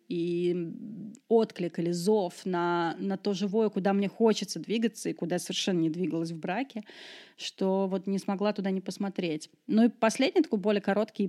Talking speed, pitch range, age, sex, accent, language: 175 wpm, 180-220 Hz, 30-49, female, native, Russian